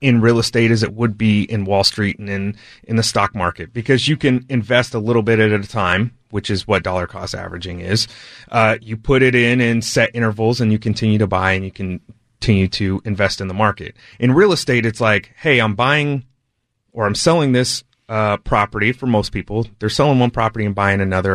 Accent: American